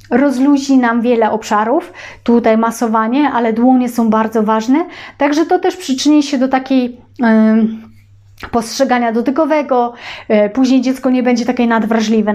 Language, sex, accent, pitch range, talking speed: Polish, female, native, 230-280 Hz, 125 wpm